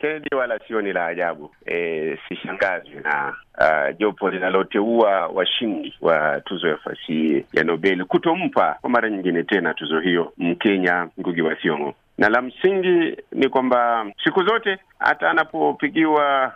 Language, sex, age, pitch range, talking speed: Swahili, male, 50-69, 110-170 Hz, 140 wpm